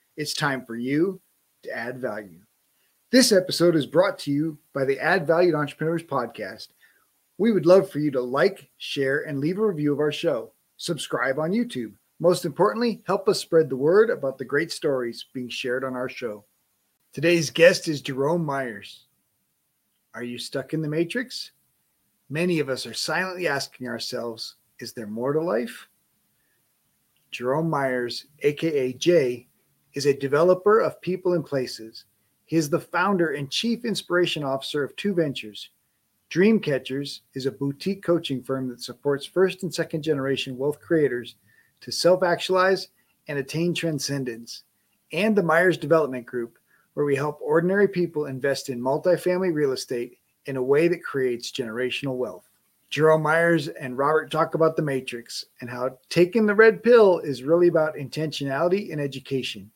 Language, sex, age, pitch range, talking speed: English, male, 30-49, 130-175 Hz, 160 wpm